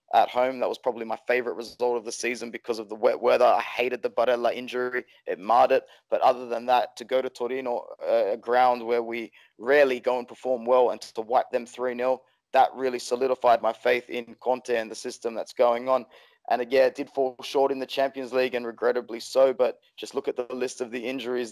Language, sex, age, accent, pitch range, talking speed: English, male, 20-39, Australian, 120-130 Hz, 225 wpm